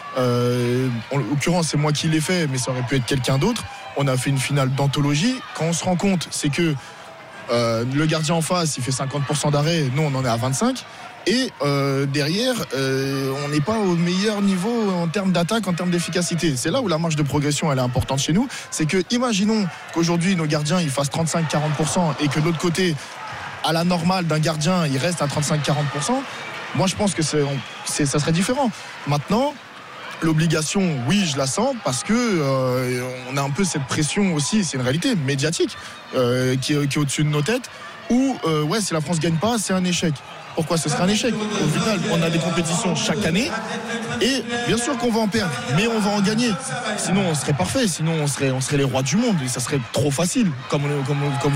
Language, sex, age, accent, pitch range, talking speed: French, male, 20-39, French, 145-195 Hz, 220 wpm